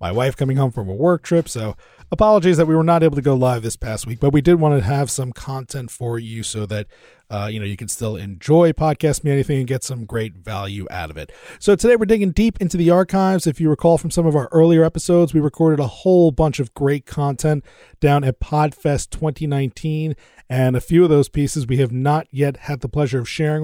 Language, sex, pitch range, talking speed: English, male, 130-160 Hz, 240 wpm